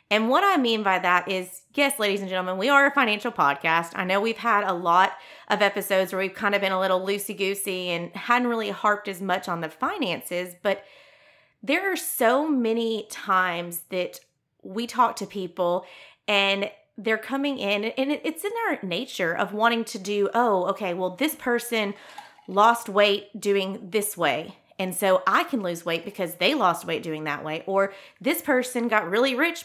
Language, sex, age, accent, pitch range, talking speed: English, female, 30-49, American, 185-240 Hz, 190 wpm